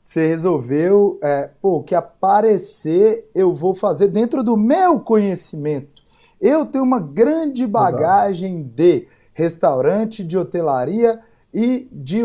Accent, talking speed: Brazilian, 125 wpm